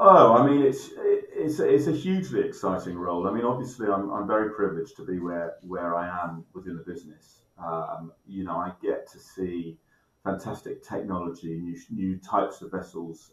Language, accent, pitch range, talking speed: English, British, 85-110 Hz, 180 wpm